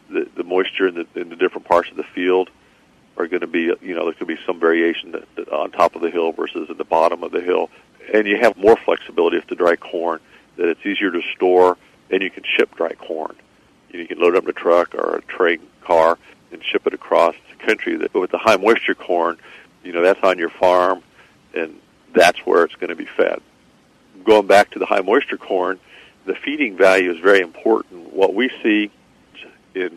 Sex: male